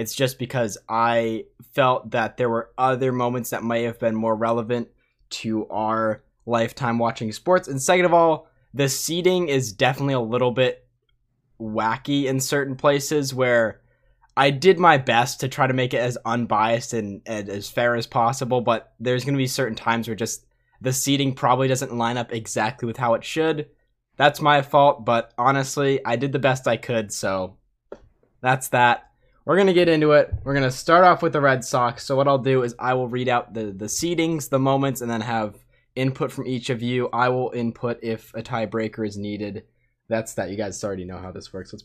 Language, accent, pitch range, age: English, American, 115-140 Hz, 10-29